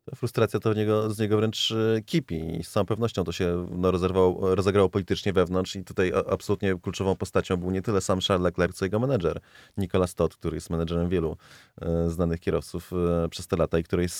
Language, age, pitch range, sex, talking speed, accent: Polish, 30-49, 90-110 Hz, male, 205 wpm, native